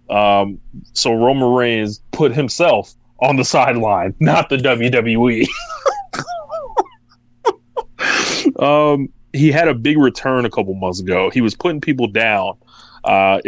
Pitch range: 110-135 Hz